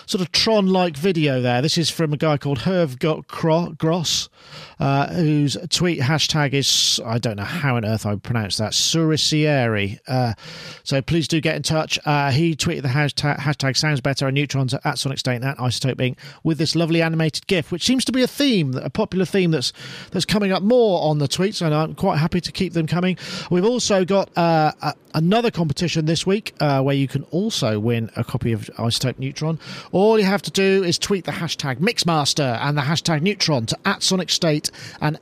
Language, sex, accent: English, male, British